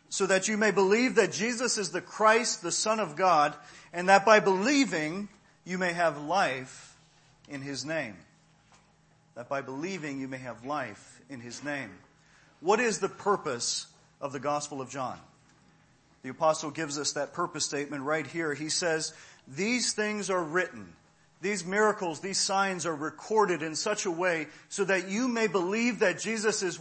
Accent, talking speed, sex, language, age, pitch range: American, 170 wpm, male, English, 40-59, 140-185 Hz